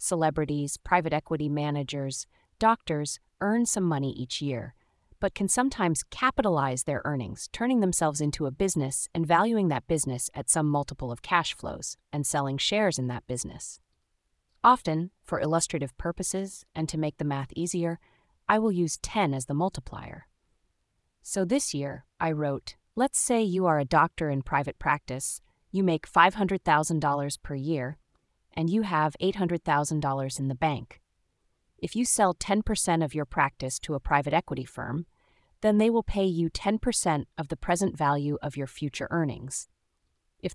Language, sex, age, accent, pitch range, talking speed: English, female, 30-49, American, 140-180 Hz, 160 wpm